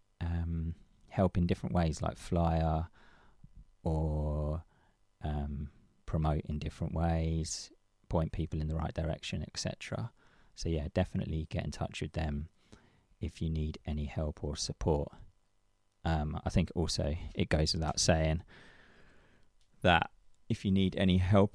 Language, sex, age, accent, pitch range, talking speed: English, male, 20-39, British, 80-95 Hz, 135 wpm